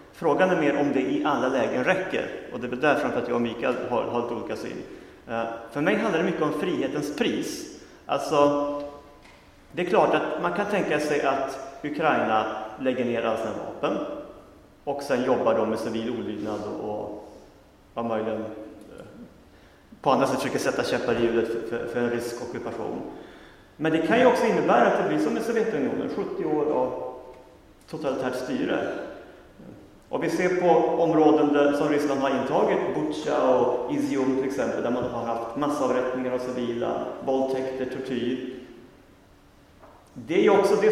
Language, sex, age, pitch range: Swedish, male, 30-49, 115-160 Hz